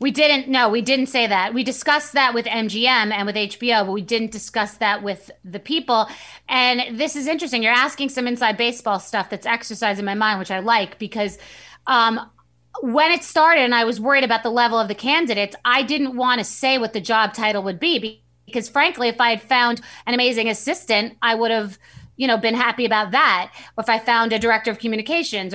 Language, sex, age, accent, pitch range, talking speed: English, female, 30-49, American, 210-260 Hz, 215 wpm